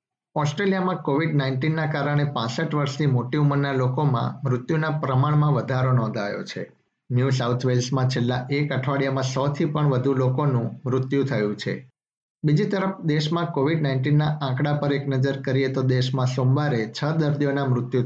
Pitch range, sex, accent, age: 130-150 Hz, male, native, 50-69